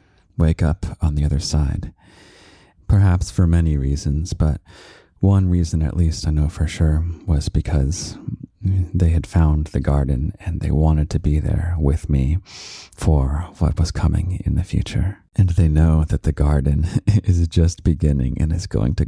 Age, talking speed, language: 30-49, 170 wpm, English